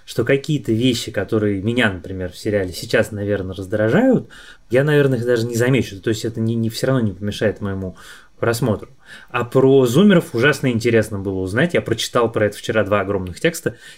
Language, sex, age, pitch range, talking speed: Russian, male, 20-39, 105-135 Hz, 185 wpm